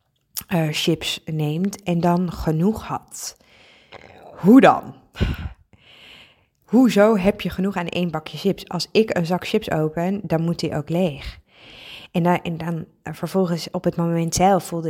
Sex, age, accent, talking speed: female, 20-39, Dutch, 155 wpm